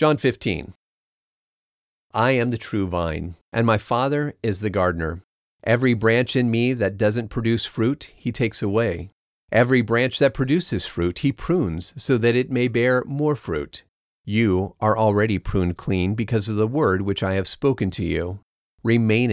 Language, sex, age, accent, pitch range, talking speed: English, male, 40-59, American, 100-125 Hz, 170 wpm